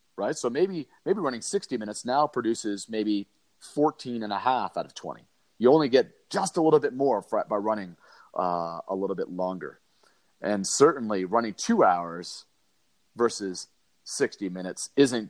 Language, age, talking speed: English, 30-49, 160 wpm